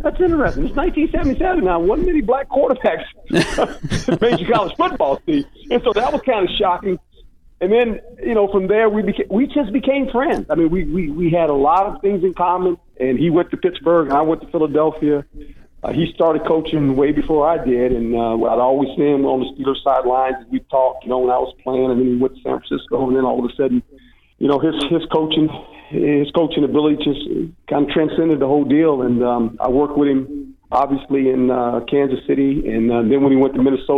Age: 50-69